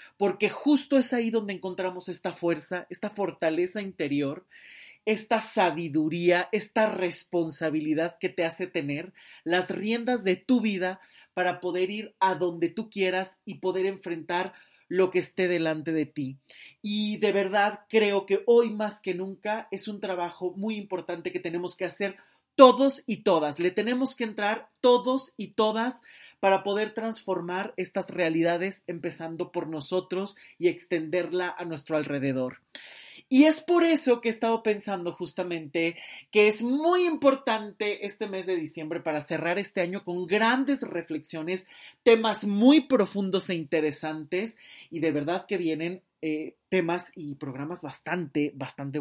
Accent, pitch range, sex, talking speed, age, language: Mexican, 170-215 Hz, male, 150 wpm, 30-49, Spanish